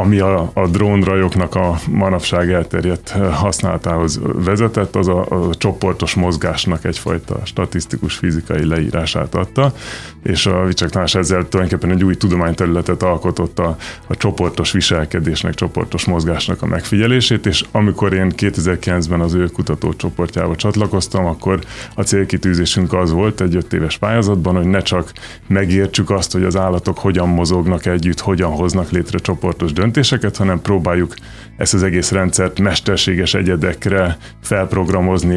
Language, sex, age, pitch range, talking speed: Hungarian, male, 30-49, 85-100 Hz, 130 wpm